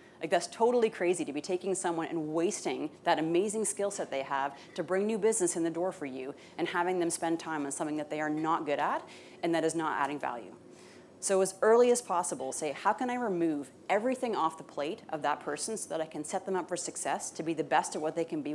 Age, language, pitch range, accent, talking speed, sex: 30-49, English, 160-190 Hz, American, 255 wpm, female